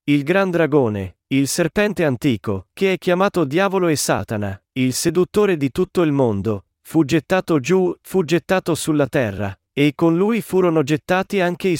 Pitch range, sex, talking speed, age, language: 115-170 Hz, male, 165 wpm, 40-59, Italian